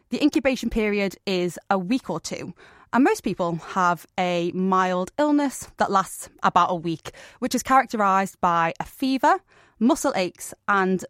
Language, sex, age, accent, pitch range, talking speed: English, female, 20-39, British, 180-235 Hz, 155 wpm